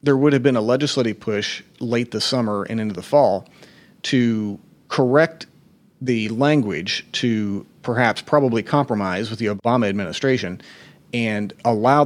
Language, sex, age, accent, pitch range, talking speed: English, male, 30-49, American, 110-135 Hz, 140 wpm